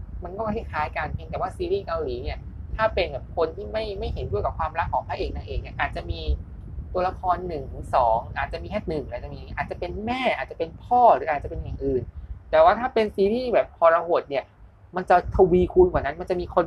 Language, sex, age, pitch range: Thai, male, 20-39, 135-205 Hz